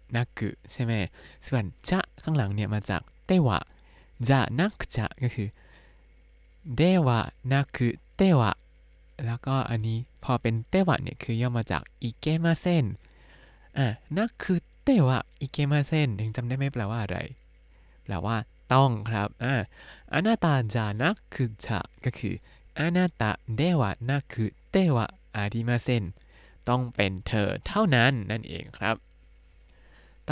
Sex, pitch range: male, 105-140 Hz